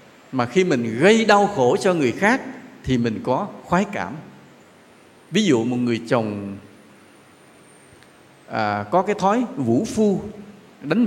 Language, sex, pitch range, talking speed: English, male, 115-175 Hz, 135 wpm